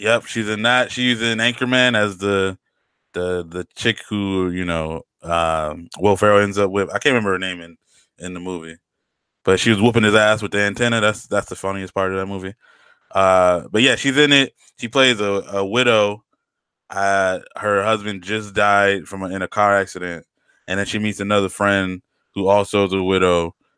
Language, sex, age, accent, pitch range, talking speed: English, male, 20-39, American, 95-115 Hz, 200 wpm